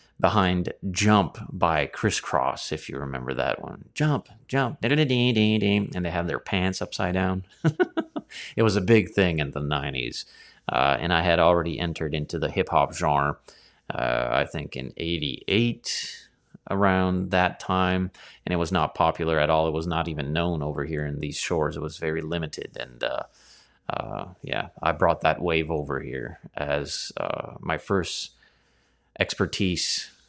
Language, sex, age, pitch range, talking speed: English, male, 30-49, 80-105 Hz, 160 wpm